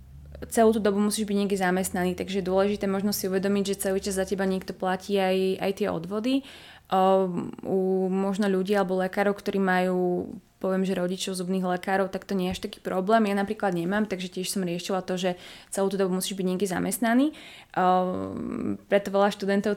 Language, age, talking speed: Slovak, 20-39, 190 wpm